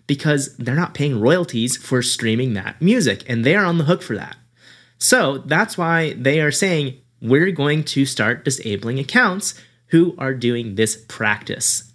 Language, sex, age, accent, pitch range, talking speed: English, male, 30-49, American, 120-155 Hz, 170 wpm